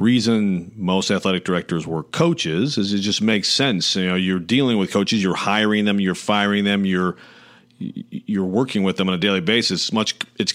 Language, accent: English, American